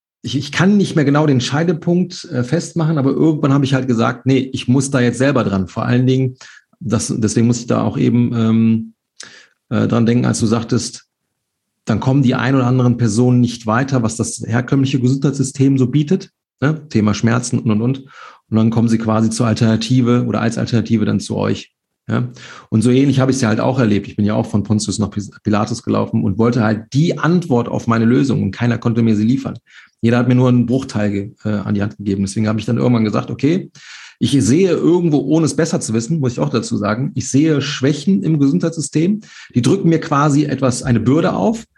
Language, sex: German, male